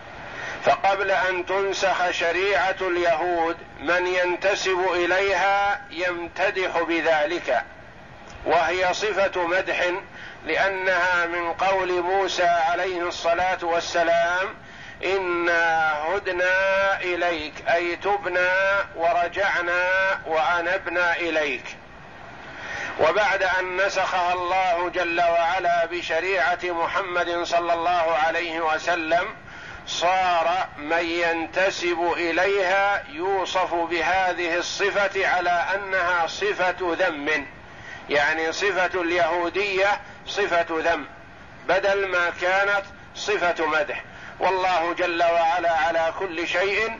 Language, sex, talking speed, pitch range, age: Arabic, male, 85 wpm, 170-190 Hz, 50-69